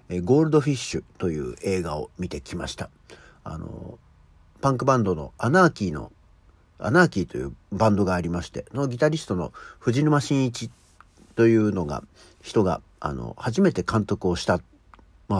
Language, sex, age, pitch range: Japanese, male, 50-69, 100-140 Hz